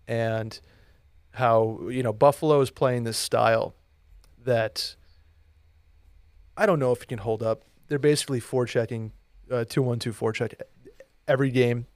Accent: American